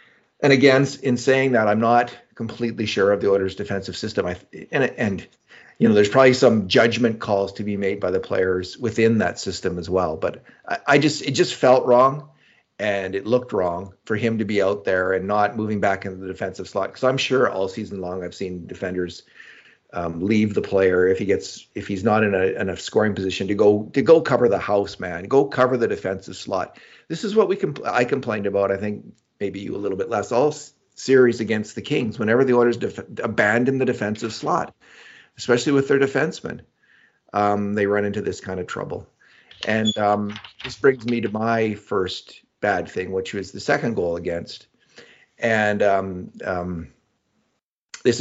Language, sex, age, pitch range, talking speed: English, male, 40-59, 100-130 Hz, 195 wpm